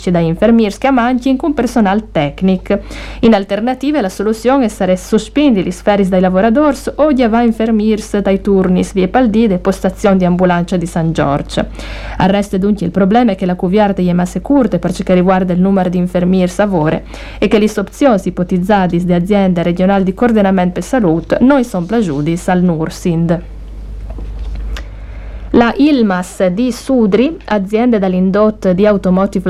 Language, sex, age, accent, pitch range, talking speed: Italian, female, 50-69, native, 180-235 Hz, 160 wpm